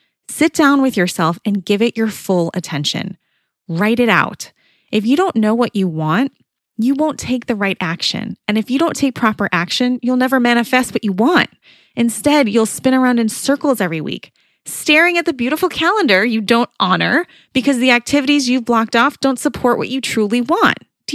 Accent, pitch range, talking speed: American, 185-260 Hz, 195 wpm